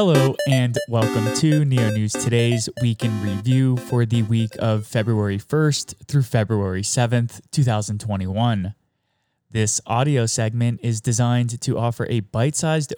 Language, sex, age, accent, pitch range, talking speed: English, male, 20-39, American, 110-130 Hz, 135 wpm